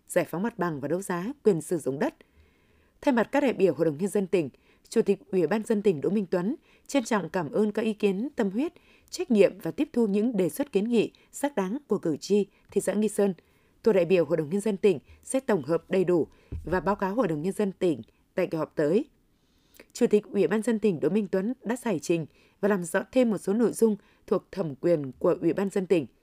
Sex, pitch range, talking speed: female, 175-225 Hz, 255 wpm